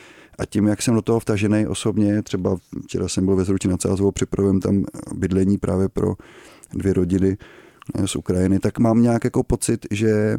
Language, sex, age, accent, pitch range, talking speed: Czech, male, 30-49, native, 95-110 Hz, 180 wpm